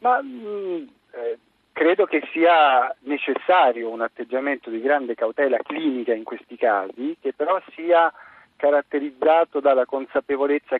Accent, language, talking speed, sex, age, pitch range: native, Italian, 115 wpm, male, 40-59, 125-155 Hz